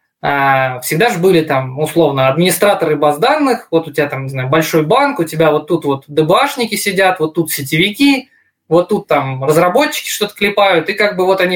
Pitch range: 155-215 Hz